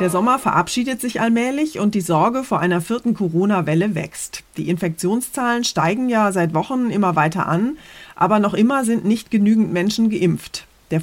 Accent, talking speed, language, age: German, 170 wpm, German, 30-49